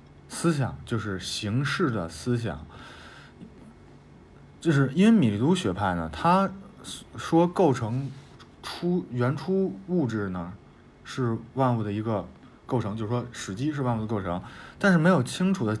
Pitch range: 95-145 Hz